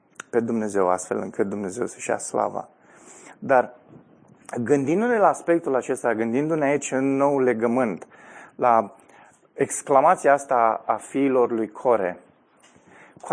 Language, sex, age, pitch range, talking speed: Romanian, male, 20-39, 125-180 Hz, 115 wpm